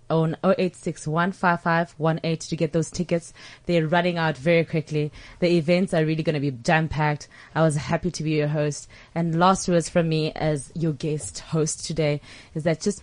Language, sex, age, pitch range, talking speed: English, female, 20-39, 155-185 Hz, 185 wpm